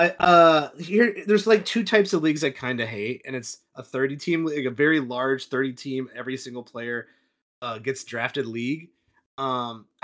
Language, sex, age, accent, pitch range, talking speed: English, male, 30-49, American, 120-155 Hz, 190 wpm